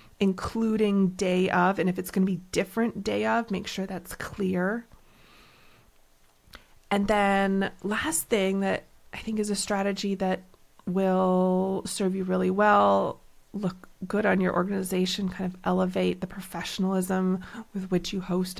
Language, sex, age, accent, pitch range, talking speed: English, female, 30-49, American, 180-205 Hz, 150 wpm